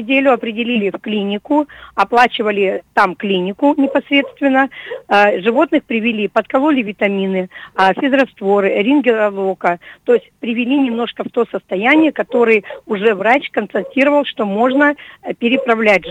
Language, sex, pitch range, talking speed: Russian, female, 200-255 Hz, 100 wpm